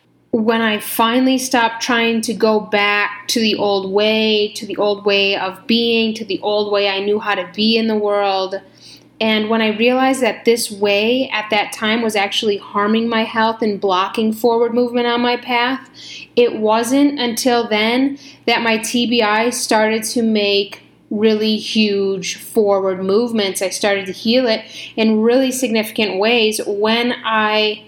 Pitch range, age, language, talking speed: 210-245 Hz, 10-29, English, 165 wpm